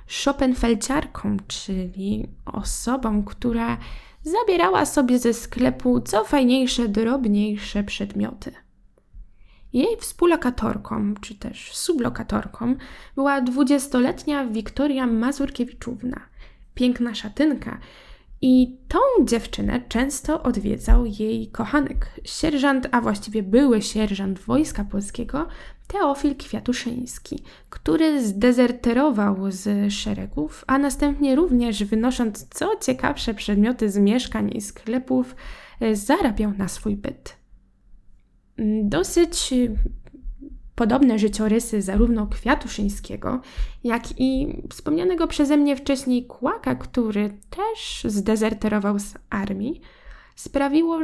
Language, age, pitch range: Polish, 10-29, 215-280 Hz